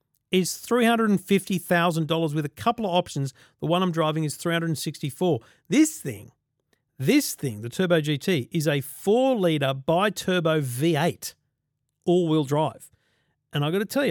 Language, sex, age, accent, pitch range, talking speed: English, male, 40-59, Australian, 130-175 Hz, 135 wpm